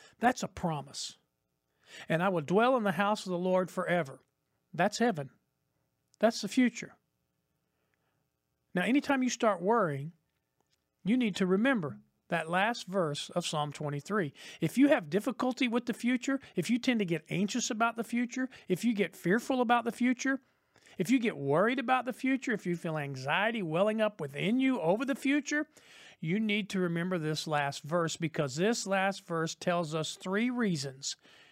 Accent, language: American, English